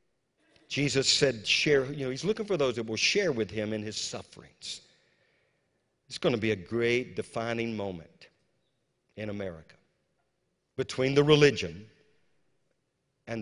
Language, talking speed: English, 140 wpm